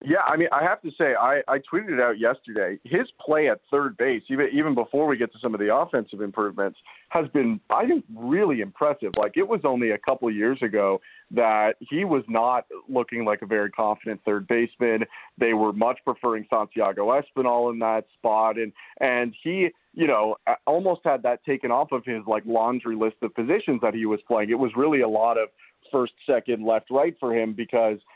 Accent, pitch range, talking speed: American, 110-140 Hz, 205 wpm